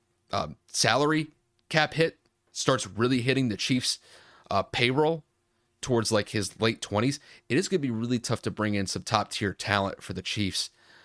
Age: 30-49